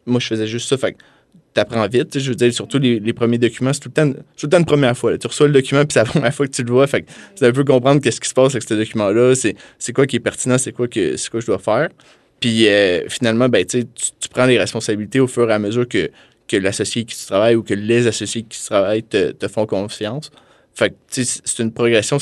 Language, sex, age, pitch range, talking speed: French, male, 20-39, 110-125 Hz, 280 wpm